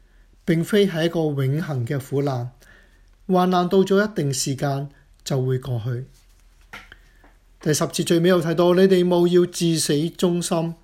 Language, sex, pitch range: Chinese, male, 140-175 Hz